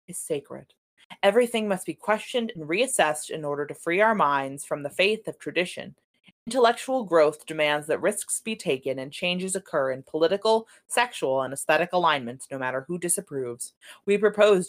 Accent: American